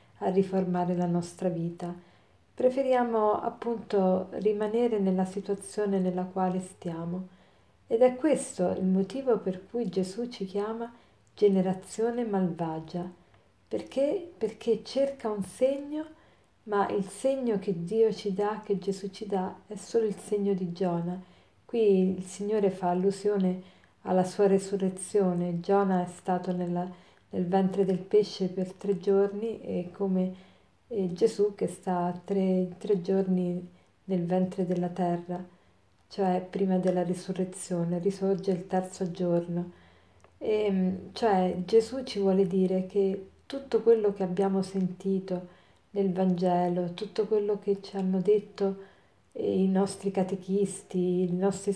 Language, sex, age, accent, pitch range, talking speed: Italian, female, 50-69, native, 185-210 Hz, 130 wpm